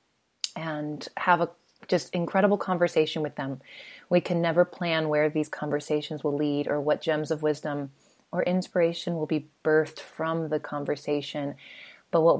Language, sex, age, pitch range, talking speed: English, female, 30-49, 150-180 Hz, 155 wpm